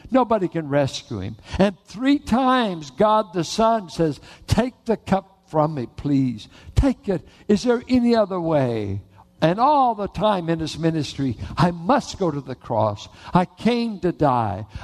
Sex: male